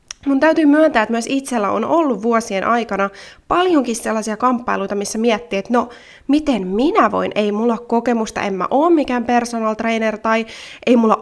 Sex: female